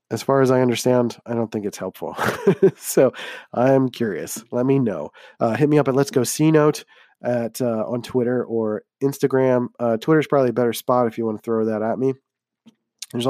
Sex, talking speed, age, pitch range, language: male, 210 wpm, 20-39, 115-135 Hz, English